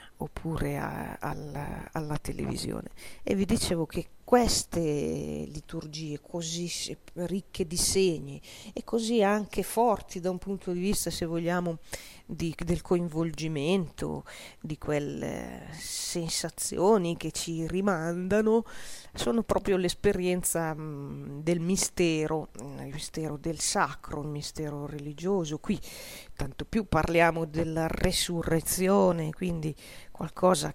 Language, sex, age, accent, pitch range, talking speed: Italian, female, 40-59, native, 155-185 Hz, 105 wpm